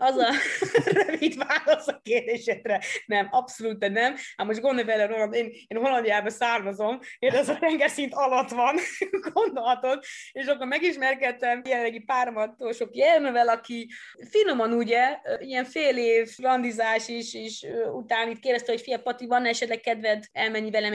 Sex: female